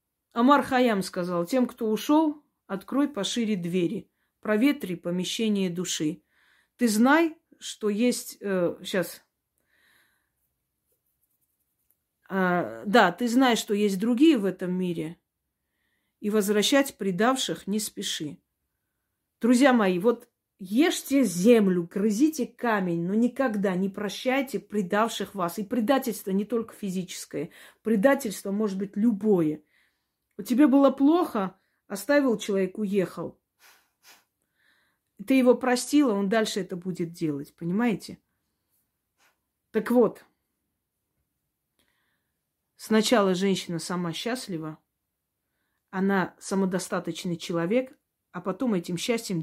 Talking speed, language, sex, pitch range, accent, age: 100 wpm, Russian, female, 180-245 Hz, native, 40-59